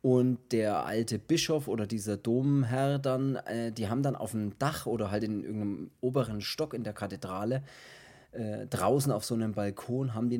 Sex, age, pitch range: male, 30-49, 110-135 Hz